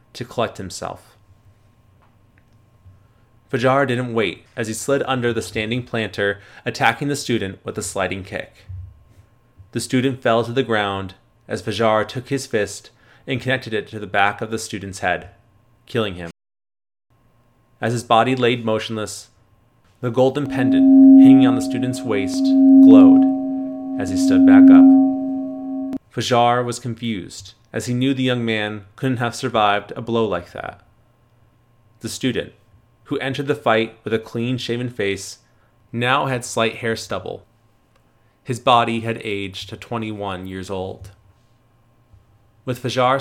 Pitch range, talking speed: 105-130 Hz, 145 wpm